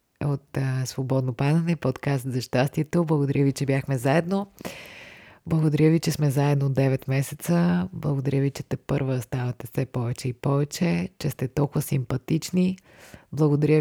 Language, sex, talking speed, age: Bulgarian, female, 145 wpm, 20-39